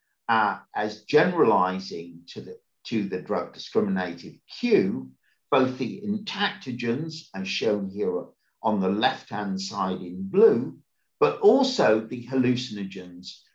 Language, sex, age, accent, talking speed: English, male, 50-69, British, 115 wpm